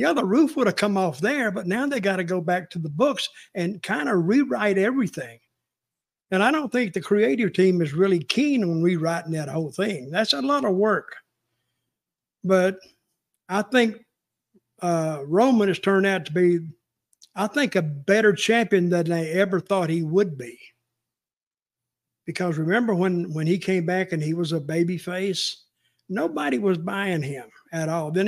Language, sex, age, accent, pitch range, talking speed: English, male, 50-69, American, 165-210 Hz, 180 wpm